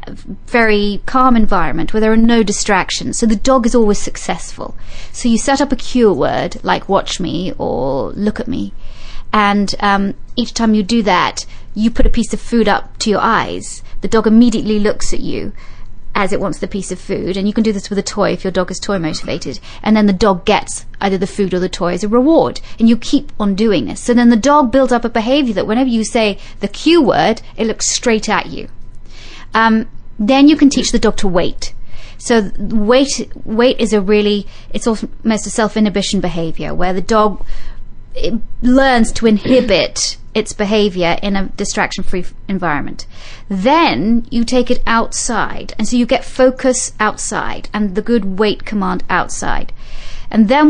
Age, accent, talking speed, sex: 30-49, British, 195 wpm, female